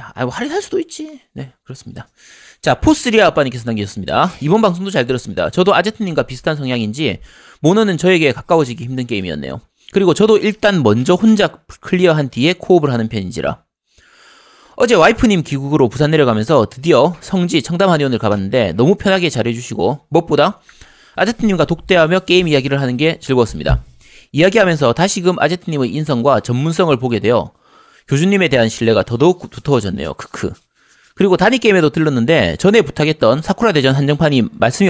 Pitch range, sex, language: 125-185 Hz, male, Korean